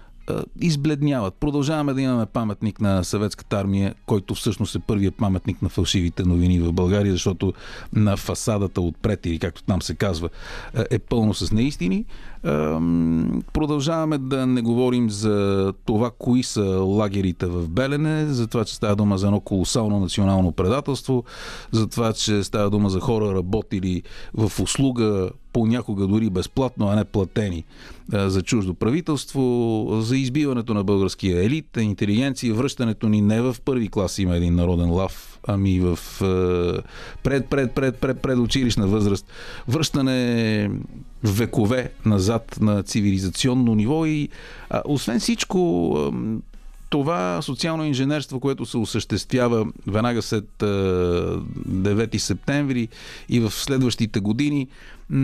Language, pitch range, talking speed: Bulgarian, 100-130 Hz, 130 wpm